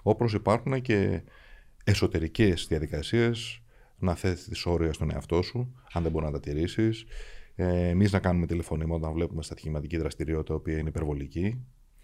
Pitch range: 80-110 Hz